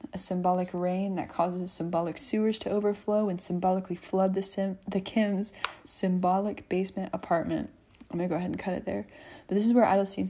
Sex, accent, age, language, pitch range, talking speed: female, American, 20-39, English, 180-200 Hz, 185 wpm